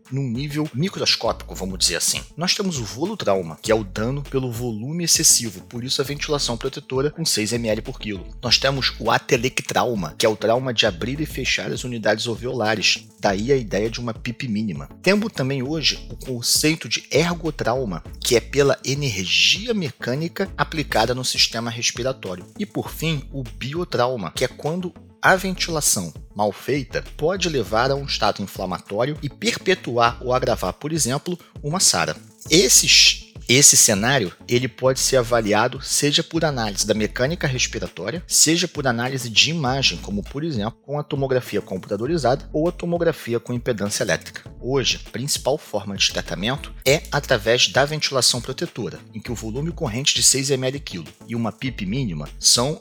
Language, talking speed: Portuguese, 165 wpm